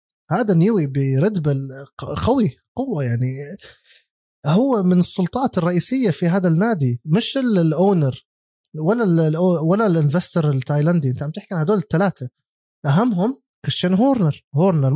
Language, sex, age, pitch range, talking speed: Arabic, male, 20-39, 145-185 Hz, 115 wpm